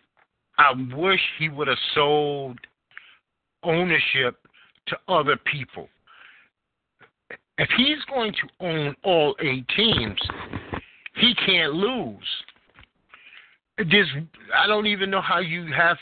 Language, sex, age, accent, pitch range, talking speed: English, male, 50-69, American, 145-210 Hz, 105 wpm